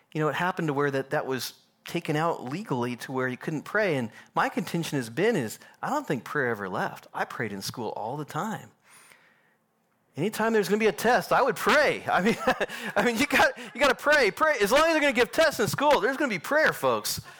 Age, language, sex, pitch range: 40-59, English, male, 160-235 Hz